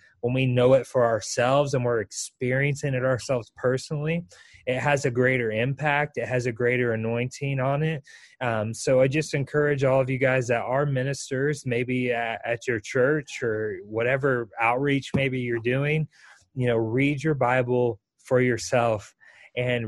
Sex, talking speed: male, 165 wpm